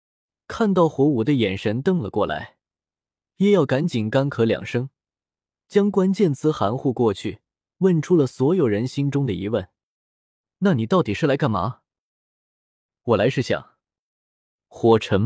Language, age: Chinese, 20-39